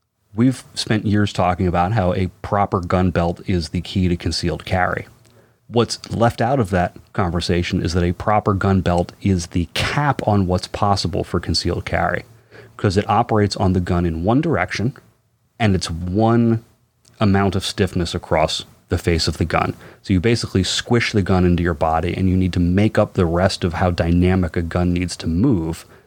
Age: 30-49